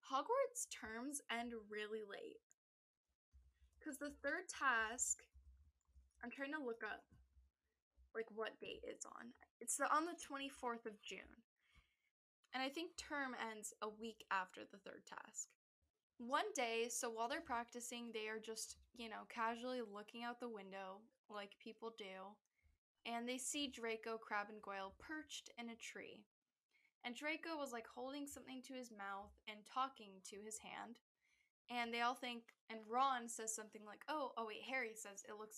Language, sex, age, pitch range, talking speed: English, female, 10-29, 205-255 Hz, 160 wpm